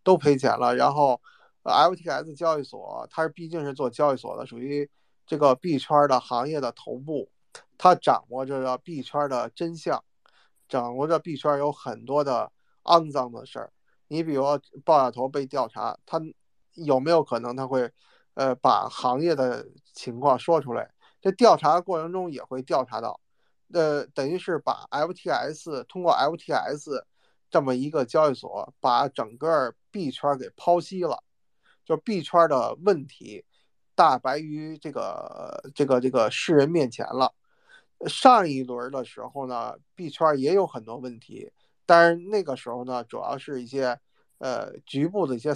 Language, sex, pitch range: Chinese, male, 130-170 Hz